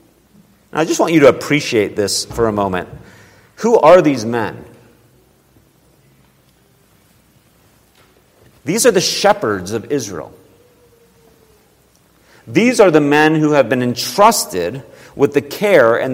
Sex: male